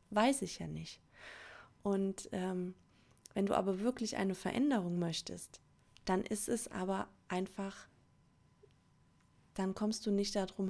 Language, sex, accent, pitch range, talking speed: German, female, German, 180-205 Hz, 130 wpm